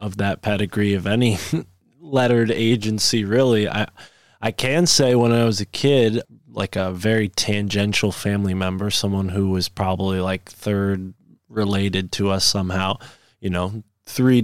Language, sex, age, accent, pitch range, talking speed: English, male, 20-39, American, 100-120 Hz, 150 wpm